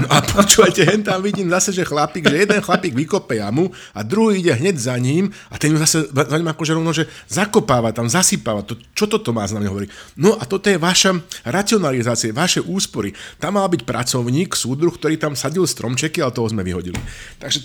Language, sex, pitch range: Slovak, male, 105-150 Hz